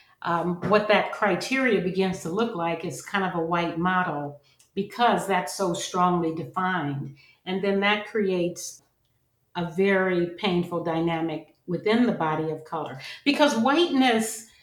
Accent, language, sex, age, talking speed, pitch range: American, English, female, 50-69, 140 wpm, 170-230 Hz